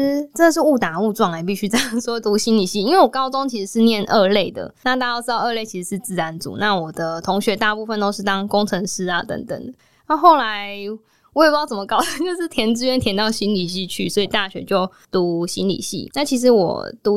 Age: 10-29